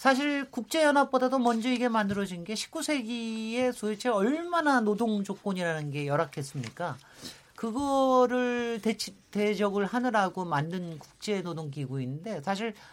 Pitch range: 155-225 Hz